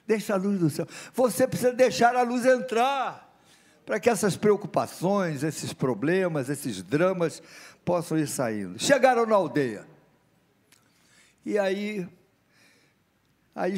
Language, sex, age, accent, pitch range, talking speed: Portuguese, male, 60-79, Brazilian, 160-210 Hz, 120 wpm